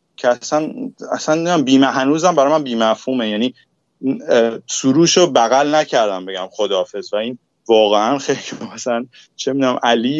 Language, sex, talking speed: Persian, male, 130 wpm